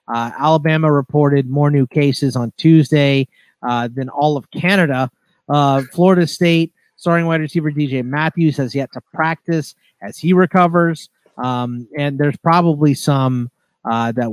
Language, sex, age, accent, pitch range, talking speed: English, male, 30-49, American, 125-165 Hz, 145 wpm